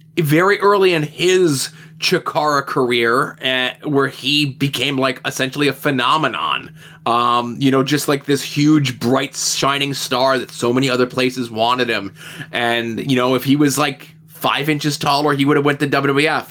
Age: 20-39